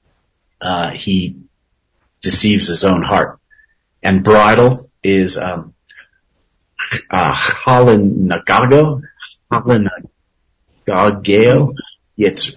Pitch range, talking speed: 95-120 Hz, 65 wpm